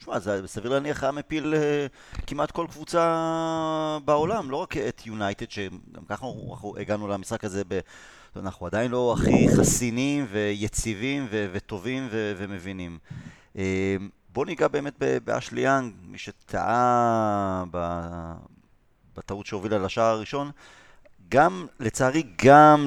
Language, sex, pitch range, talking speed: Hebrew, male, 100-155 Hz, 120 wpm